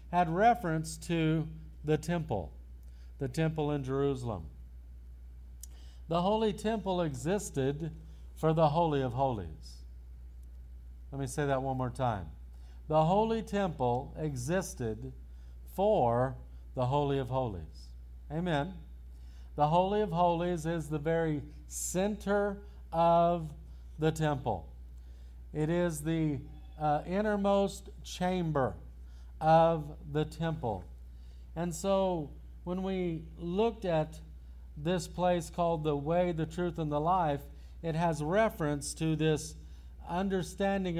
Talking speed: 115 wpm